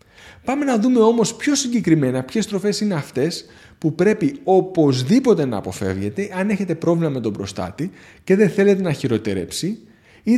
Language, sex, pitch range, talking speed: Greek, male, 125-195 Hz, 155 wpm